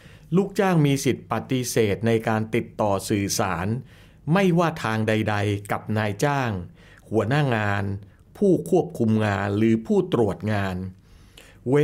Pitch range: 110-150 Hz